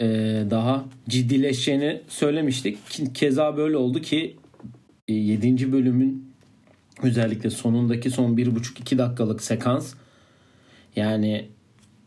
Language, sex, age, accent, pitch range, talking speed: Turkish, male, 40-59, native, 110-130 Hz, 80 wpm